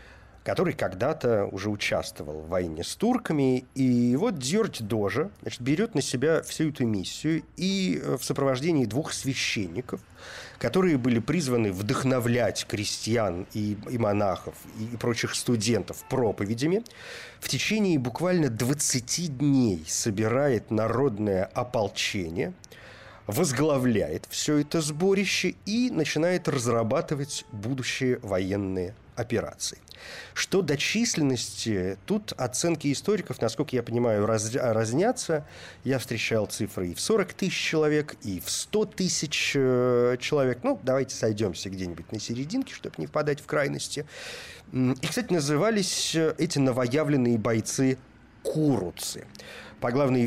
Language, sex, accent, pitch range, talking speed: Russian, male, native, 110-160 Hz, 120 wpm